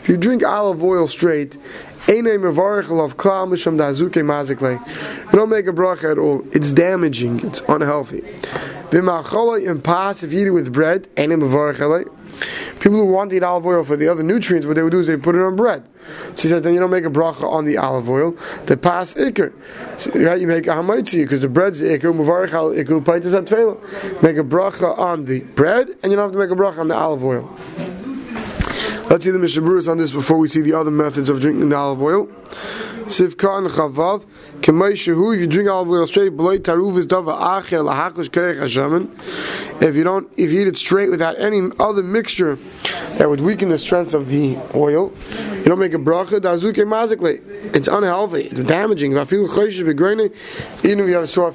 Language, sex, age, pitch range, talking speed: English, male, 20-39, 160-195 Hz, 155 wpm